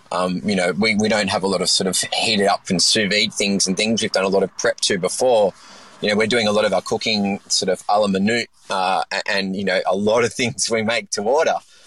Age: 20-39